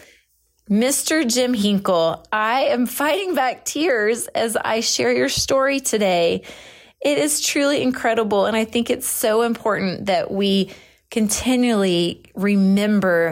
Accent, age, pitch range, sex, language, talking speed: American, 30-49, 185-235 Hz, female, English, 125 wpm